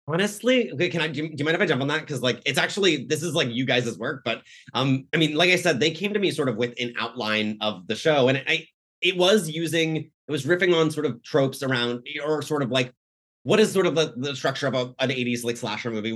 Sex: male